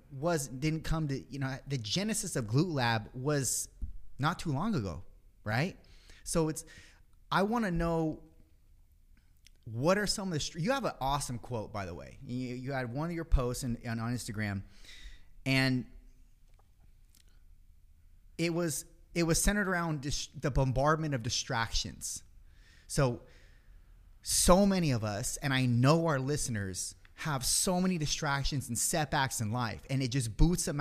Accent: American